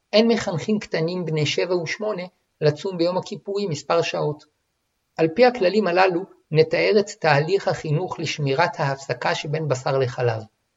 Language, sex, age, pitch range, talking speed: Hebrew, male, 50-69, 145-180 Hz, 135 wpm